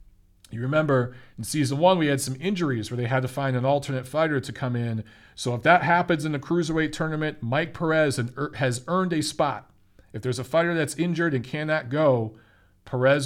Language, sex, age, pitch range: English, male, 40-59, 115-155 Hz